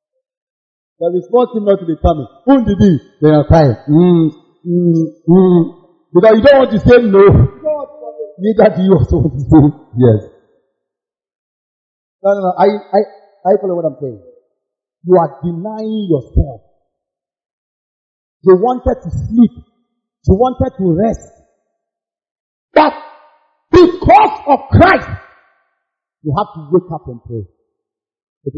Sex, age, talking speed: male, 50-69, 135 wpm